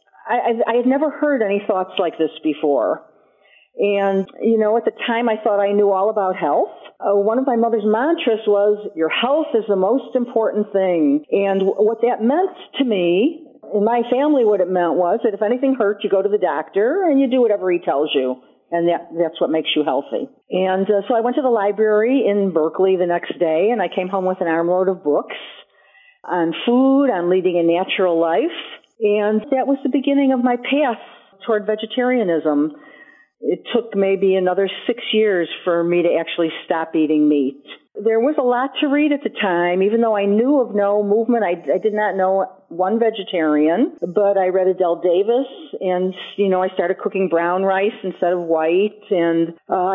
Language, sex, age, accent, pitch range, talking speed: English, female, 50-69, American, 175-235 Hz, 195 wpm